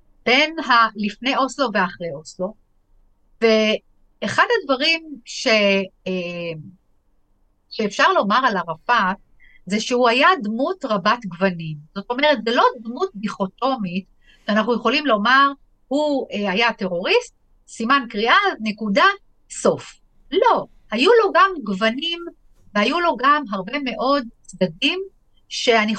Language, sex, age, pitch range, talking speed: Hebrew, female, 60-79, 195-250 Hz, 110 wpm